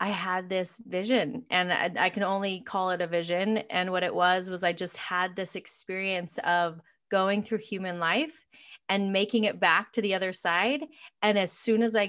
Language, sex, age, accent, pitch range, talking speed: English, female, 20-39, American, 180-220 Hz, 205 wpm